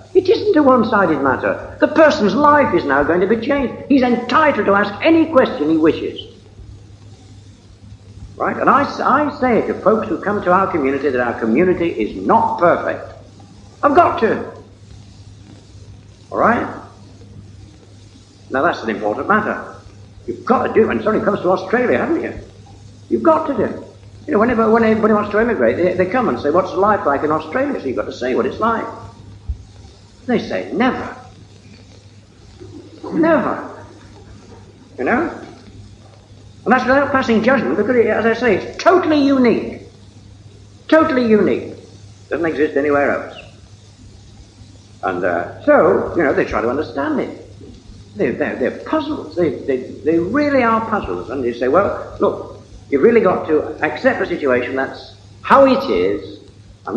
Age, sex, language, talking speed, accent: 60-79, male, English, 165 wpm, British